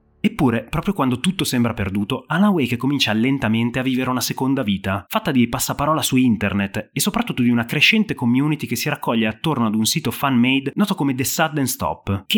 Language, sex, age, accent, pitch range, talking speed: Italian, male, 30-49, native, 110-150 Hz, 195 wpm